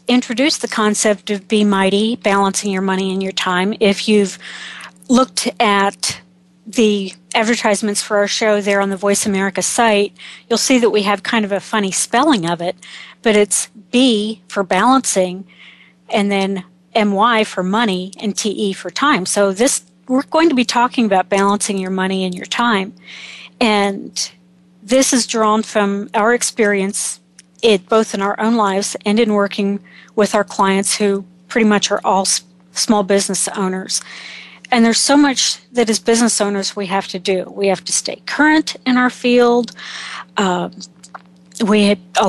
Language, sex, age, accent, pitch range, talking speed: English, female, 40-59, American, 190-225 Hz, 165 wpm